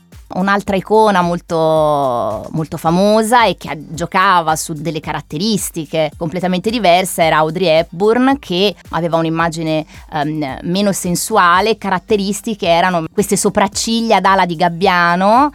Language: Italian